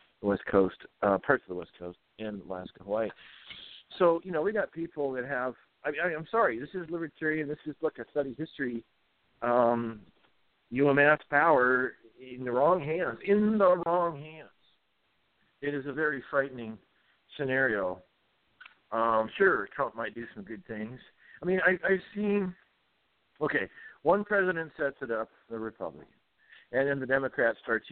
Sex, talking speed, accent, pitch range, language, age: male, 160 wpm, American, 115-160 Hz, English, 50-69